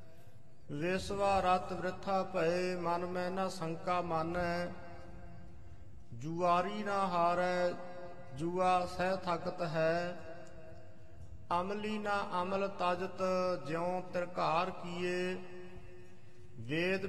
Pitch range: 170-190 Hz